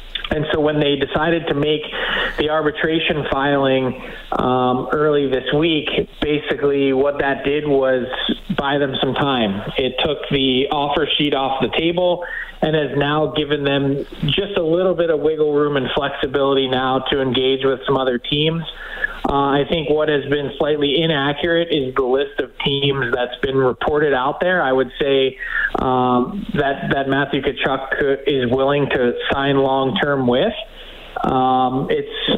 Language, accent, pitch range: English, American, 135-155 Hz